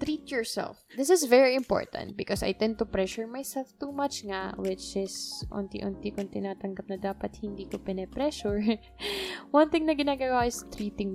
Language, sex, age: English, female, 20-39